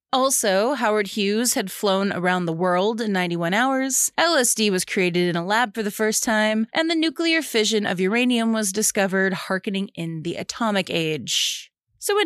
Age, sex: 20-39, female